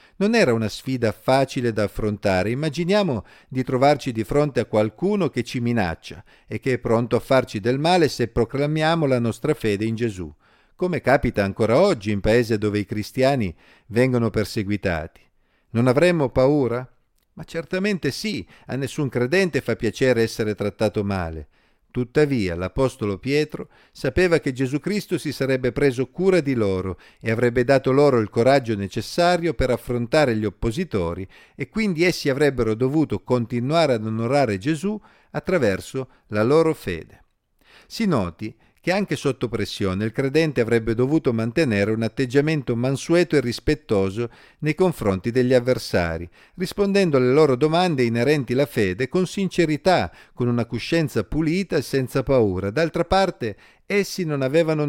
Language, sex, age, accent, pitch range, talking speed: Italian, male, 50-69, native, 110-155 Hz, 145 wpm